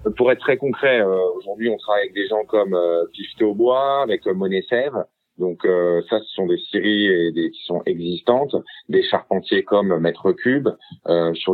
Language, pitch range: French, 90-140 Hz